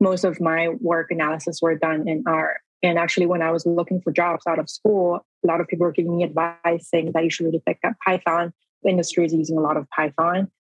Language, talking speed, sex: English, 250 wpm, female